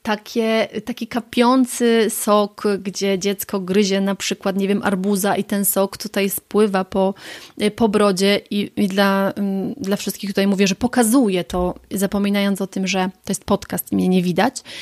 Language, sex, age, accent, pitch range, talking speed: Polish, female, 30-49, native, 190-220 Hz, 160 wpm